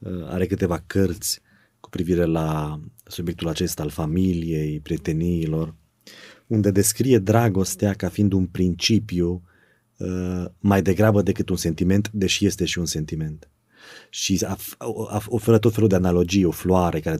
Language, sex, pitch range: Romanian, male, 85-105 Hz